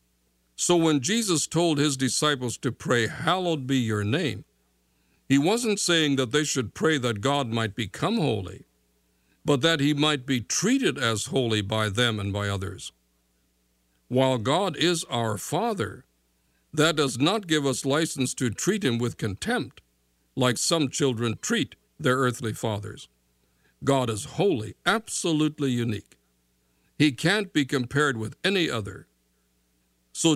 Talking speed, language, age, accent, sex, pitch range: 145 wpm, English, 60-79, American, male, 95-145 Hz